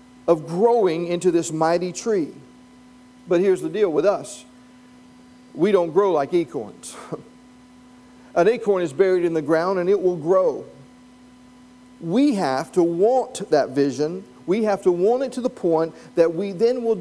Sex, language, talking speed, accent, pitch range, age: male, English, 160 wpm, American, 160-250 Hz, 50-69